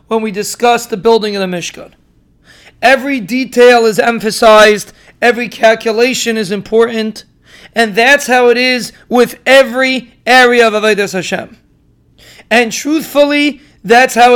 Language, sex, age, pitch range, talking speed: English, male, 40-59, 220-245 Hz, 130 wpm